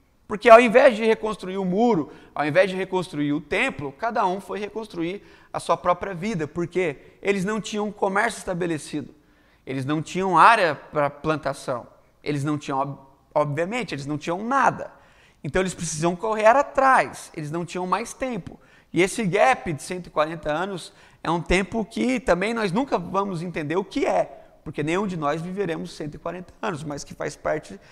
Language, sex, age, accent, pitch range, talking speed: Portuguese, male, 30-49, Brazilian, 155-205 Hz, 170 wpm